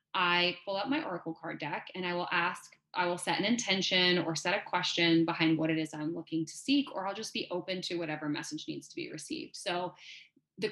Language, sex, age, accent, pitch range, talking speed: English, female, 20-39, American, 165-200 Hz, 235 wpm